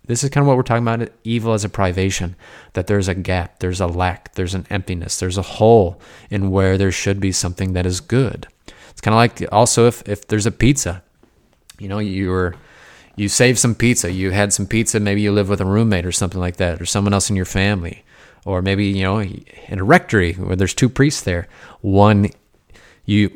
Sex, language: male, English